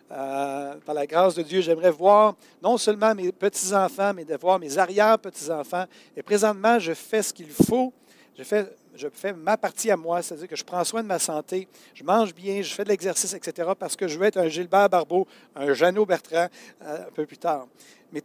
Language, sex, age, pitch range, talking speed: French, male, 60-79, 165-215 Hz, 215 wpm